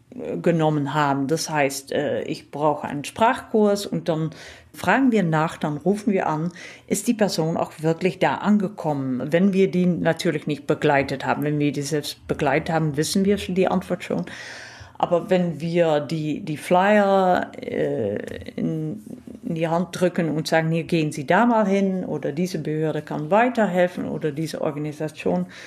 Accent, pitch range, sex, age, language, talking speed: German, 145-185 Hz, female, 50-69, German, 160 wpm